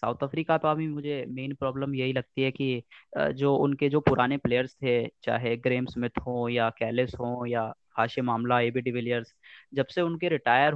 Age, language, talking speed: 20-39, Hindi, 185 wpm